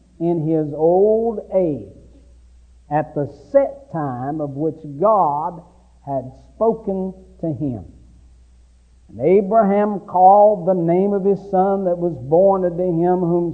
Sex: male